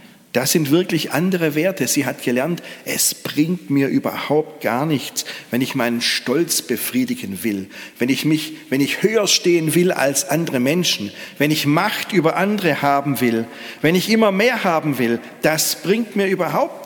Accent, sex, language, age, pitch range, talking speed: German, male, German, 50-69, 125-165 Hz, 170 wpm